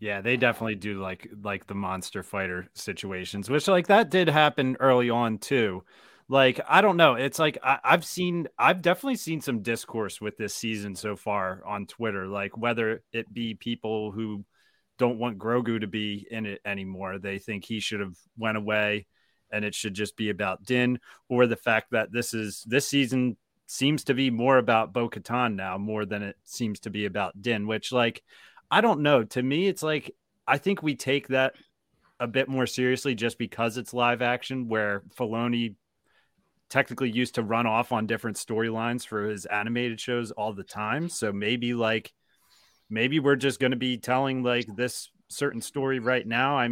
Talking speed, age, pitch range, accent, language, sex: 190 wpm, 30-49, 105-130 Hz, American, English, male